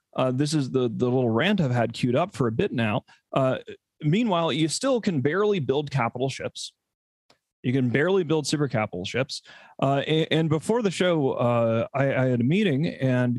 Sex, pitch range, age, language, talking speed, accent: male, 120-155 Hz, 30-49, English, 195 wpm, American